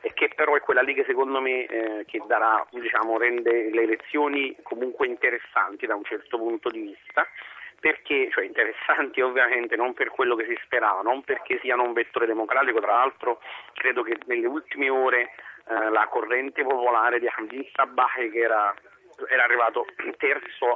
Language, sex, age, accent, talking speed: Italian, male, 40-59, native, 170 wpm